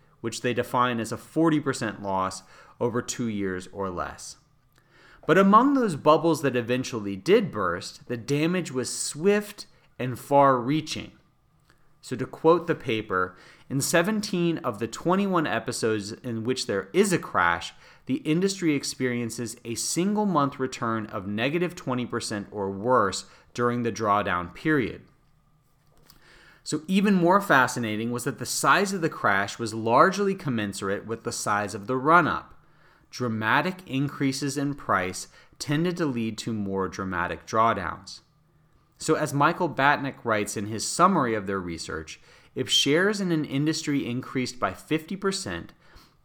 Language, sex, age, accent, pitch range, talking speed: English, male, 30-49, American, 110-155 Hz, 140 wpm